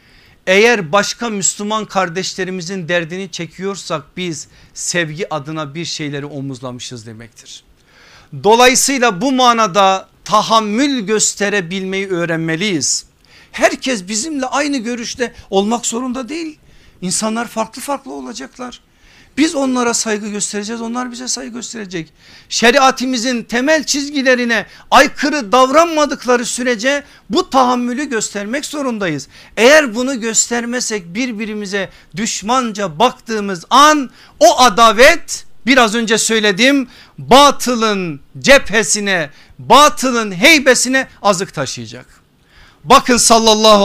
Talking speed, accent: 95 wpm, native